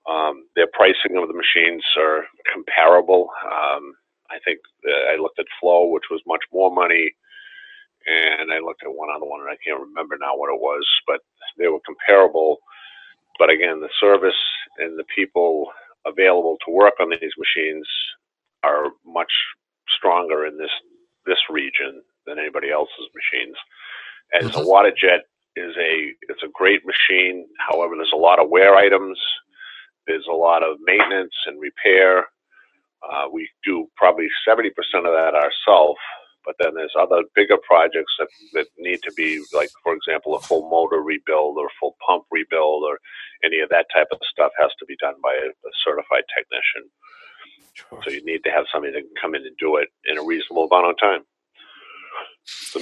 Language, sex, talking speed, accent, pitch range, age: English, male, 170 wpm, American, 310-440 Hz, 40-59